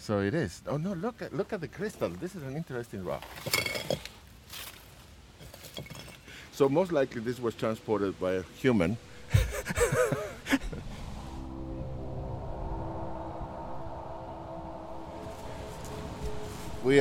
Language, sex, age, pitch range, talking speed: English, male, 60-79, 90-115 Hz, 90 wpm